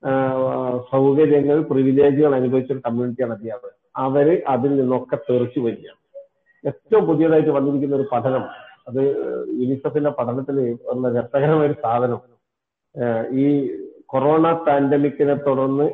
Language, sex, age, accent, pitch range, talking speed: Malayalam, male, 50-69, native, 130-150 Hz, 100 wpm